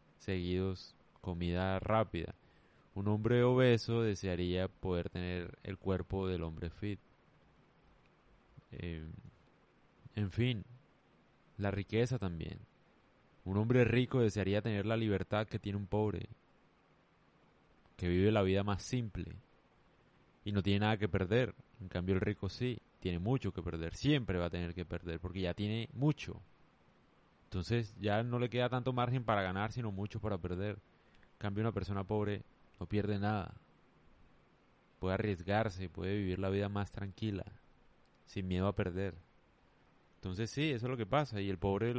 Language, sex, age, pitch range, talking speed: Spanish, male, 20-39, 90-110 Hz, 150 wpm